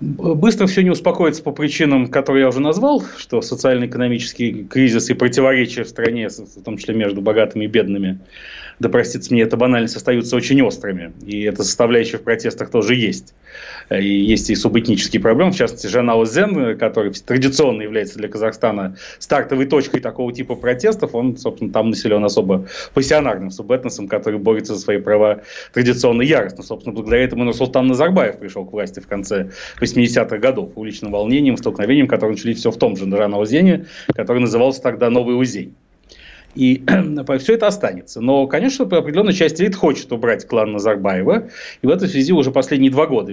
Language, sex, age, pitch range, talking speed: Russian, male, 30-49, 110-140 Hz, 170 wpm